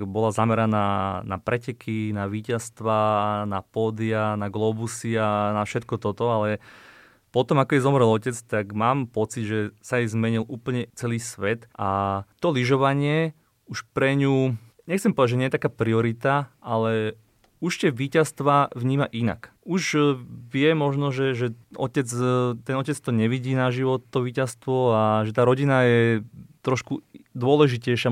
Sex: male